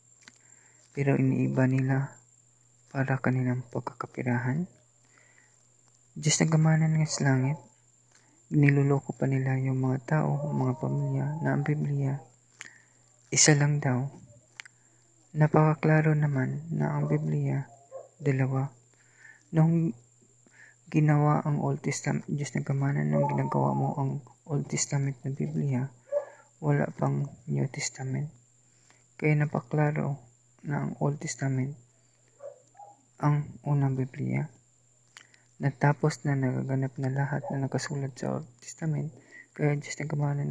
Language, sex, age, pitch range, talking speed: English, female, 20-39, 120-145 Hz, 110 wpm